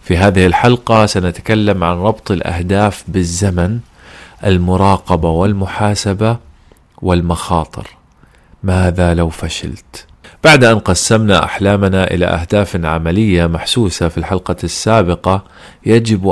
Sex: male